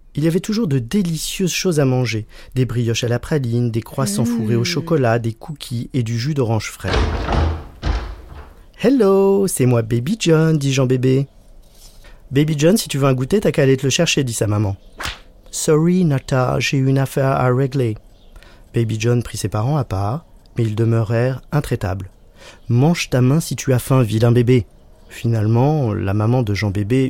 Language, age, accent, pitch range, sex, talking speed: French, 30-49, French, 105-140 Hz, male, 195 wpm